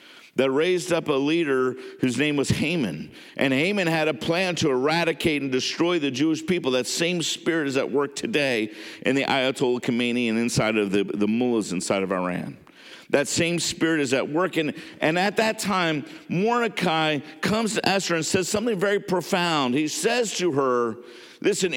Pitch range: 135-185 Hz